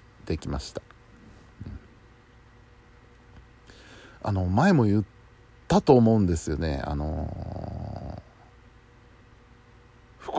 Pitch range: 95-125 Hz